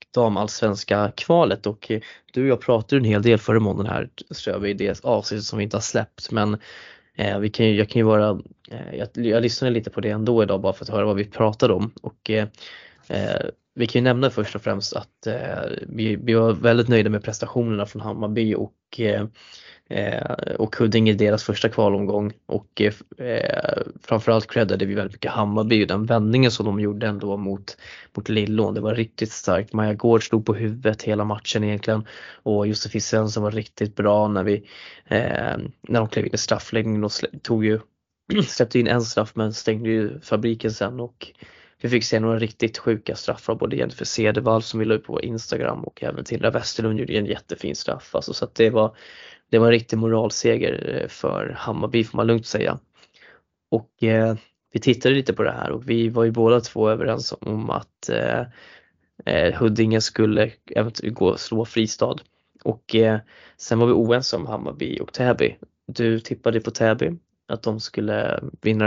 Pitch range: 105-115 Hz